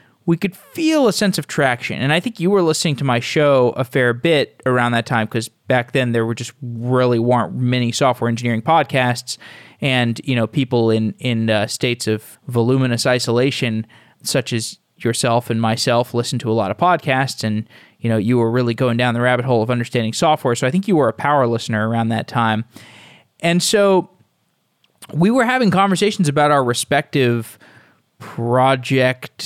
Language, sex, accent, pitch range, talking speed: English, male, American, 120-155 Hz, 185 wpm